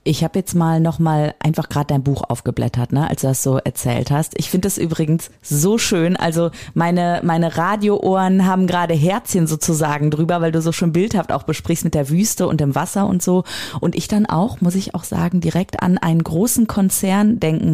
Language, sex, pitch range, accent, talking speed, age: German, female, 160-200 Hz, German, 205 wpm, 30-49